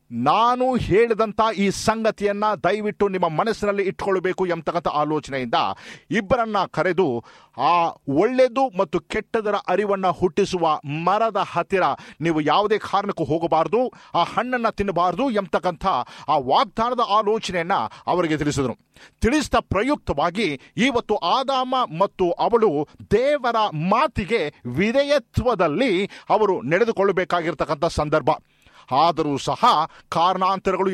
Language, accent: Kannada, native